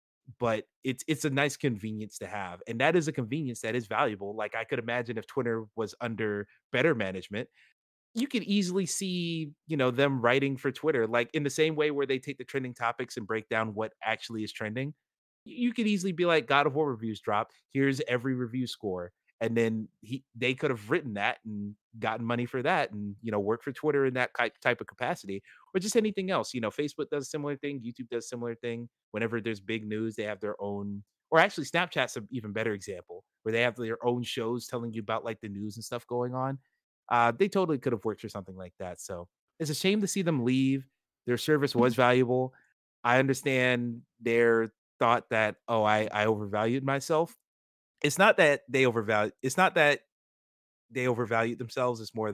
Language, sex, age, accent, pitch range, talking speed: English, male, 30-49, American, 110-145 Hz, 210 wpm